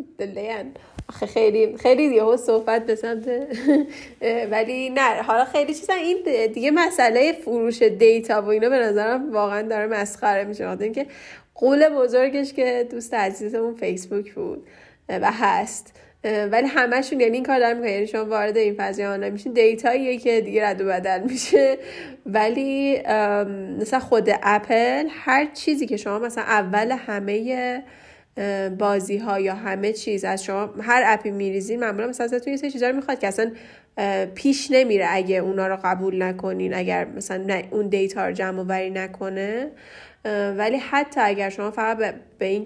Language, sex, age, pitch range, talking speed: Persian, female, 10-29, 205-255 Hz, 150 wpm